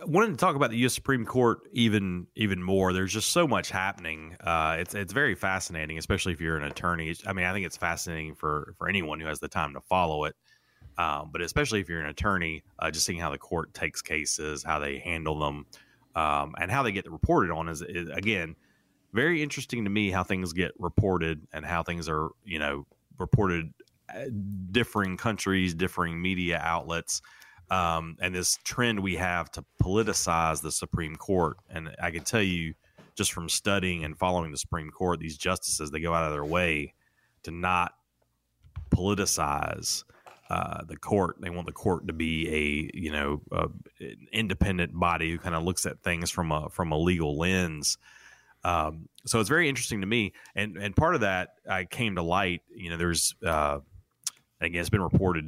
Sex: male